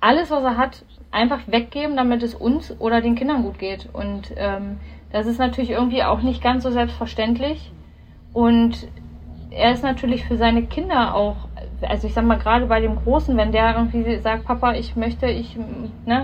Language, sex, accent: German, female, German